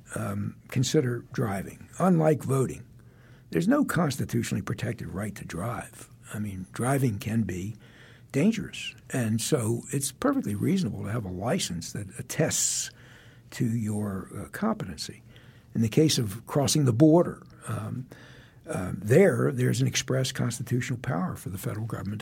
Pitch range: 105-135 Hz